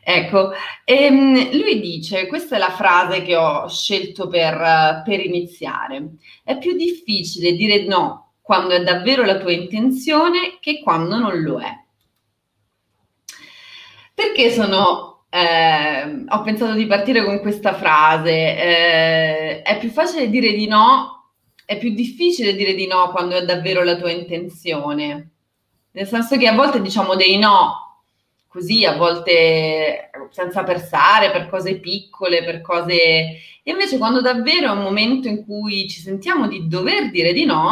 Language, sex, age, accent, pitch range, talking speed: Italian, female, 30-49, native, 170-235 Hz, 145 wpm